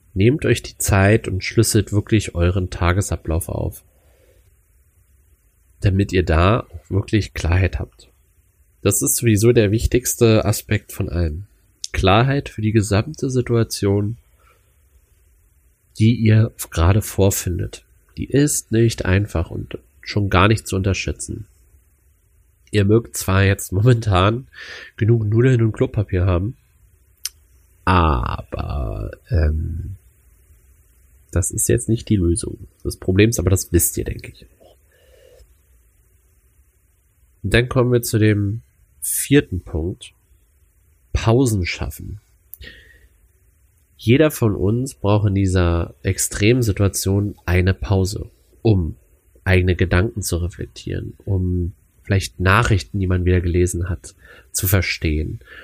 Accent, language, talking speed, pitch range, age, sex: German, German, 110 wpm, 85-110 Hz, 30-49, male